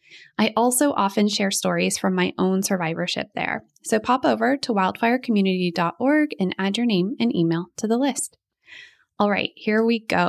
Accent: American